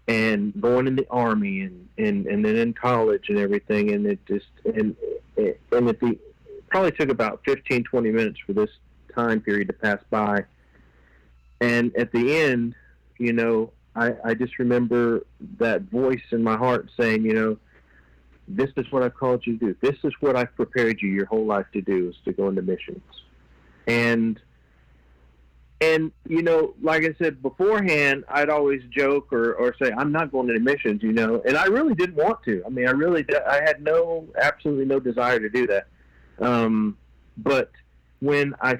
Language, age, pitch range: English, 40-59, 105-155 Hz